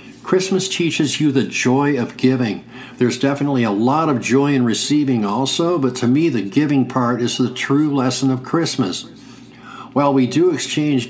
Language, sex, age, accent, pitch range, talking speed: English, male, 60-79, American, 125-145 Hz, 175 wpm